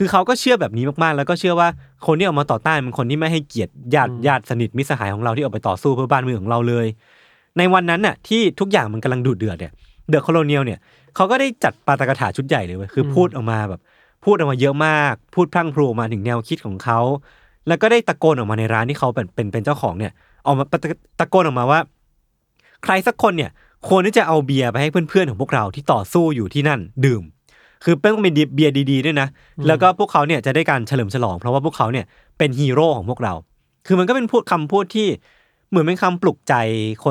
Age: 20-39